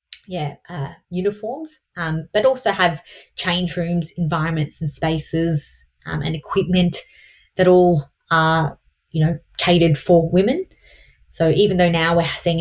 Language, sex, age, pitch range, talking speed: English, female, 20-39, 155-175 Hz, 140 wpm